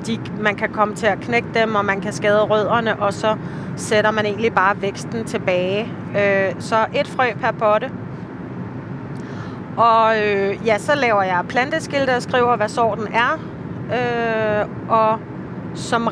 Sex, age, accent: female, 30-49, native